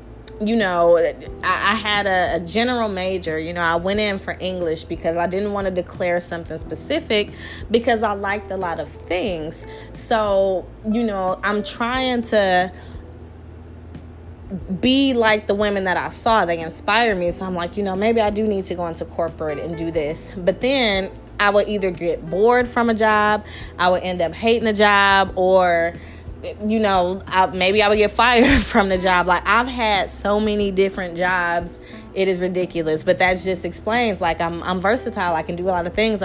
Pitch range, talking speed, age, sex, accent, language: 175-215 Hz, 190 wpm, 20-39, female, American, English